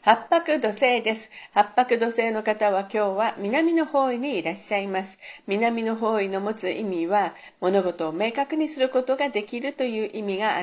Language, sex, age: Japanese, female, 50-69